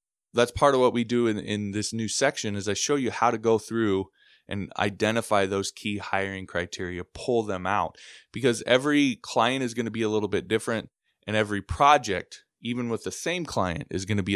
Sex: male